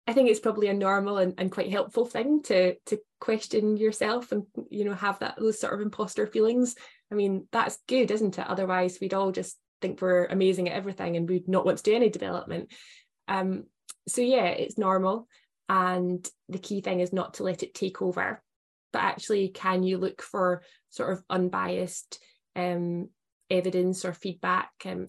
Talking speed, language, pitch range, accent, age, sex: 185 wpm, English, 180-205 Hz, British, 10-29, female